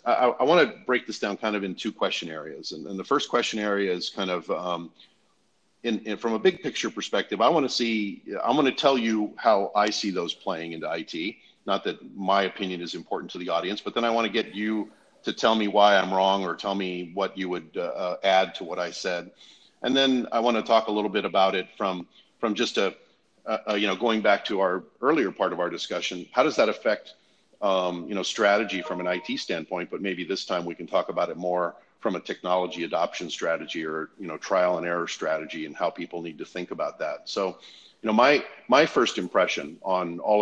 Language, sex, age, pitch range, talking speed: English, male, 40-59, 90-110 Hz, 235 wpm